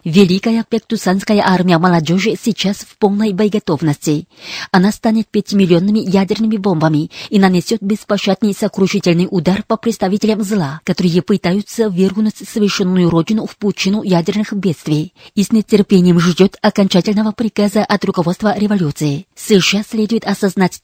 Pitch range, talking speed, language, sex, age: 180-215 Hz, 120 wpm, Russian, female, 30-49